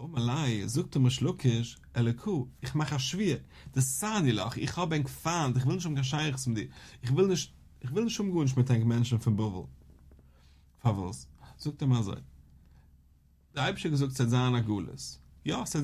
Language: English